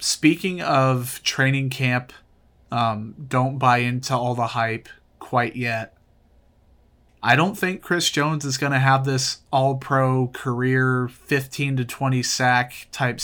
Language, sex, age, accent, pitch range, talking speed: English, male, 30-49, American, 120-140 Hz, 135 wpm